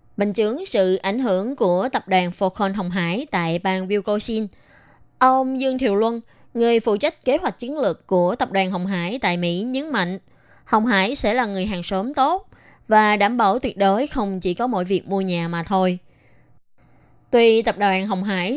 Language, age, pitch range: Vietnamese, 20-39, 185-240 Hz